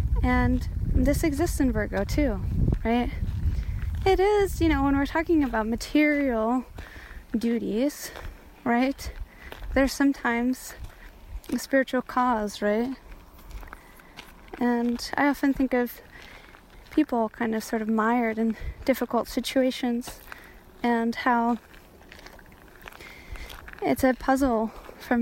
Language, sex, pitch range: English, female, 230-265 Hz